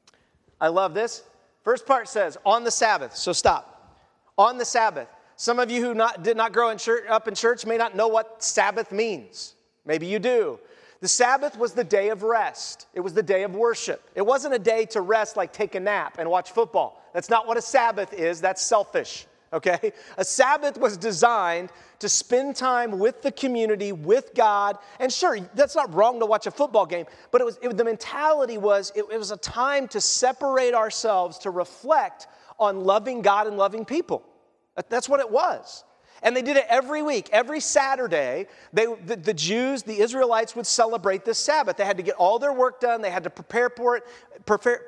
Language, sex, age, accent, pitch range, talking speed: English, male, 40-59, American, 205-260 Hz, 200 wpm